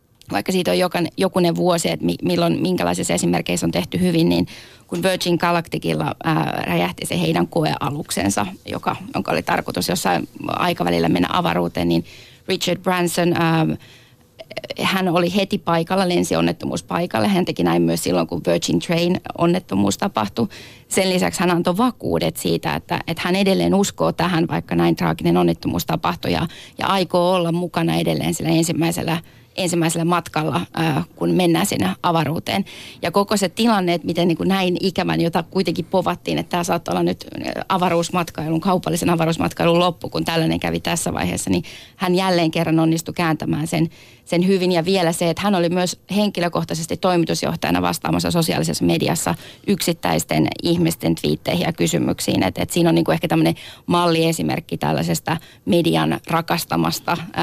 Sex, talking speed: female, 150 wpm